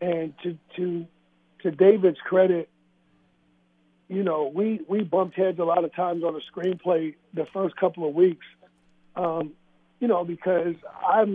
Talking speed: 155 wpm